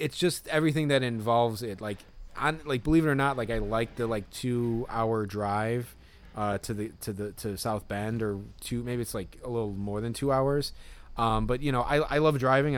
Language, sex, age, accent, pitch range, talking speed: English, male, 20-39, American, 100-125 Hz, 225 wpm